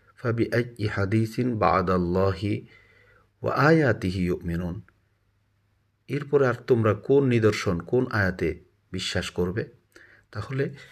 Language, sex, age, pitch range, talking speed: Bengali, male, 50-69, 100-120 Hz, 90 wpm